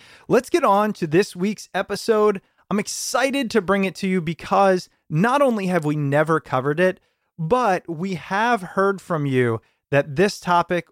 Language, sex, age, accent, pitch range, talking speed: English, male, 30-49, American, 140-195 Hz, 170 wpm